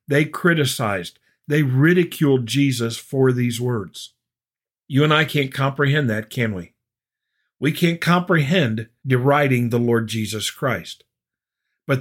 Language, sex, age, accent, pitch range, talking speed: English, male, 50-69, American, 120-150 Hz, 125 wpm